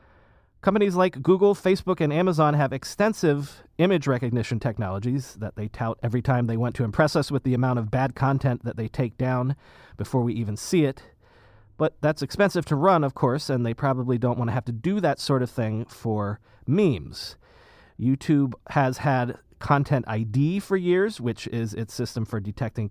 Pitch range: 120-170 Hz